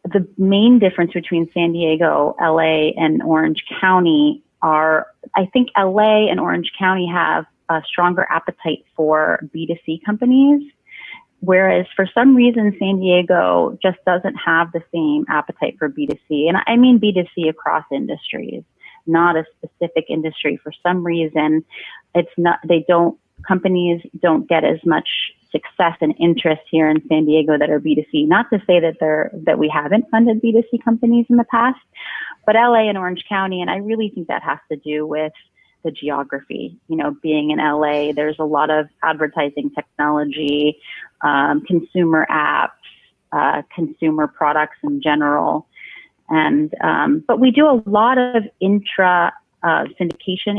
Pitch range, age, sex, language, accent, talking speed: 155-200 Hz, 30-49, female, English, American, 150 wpm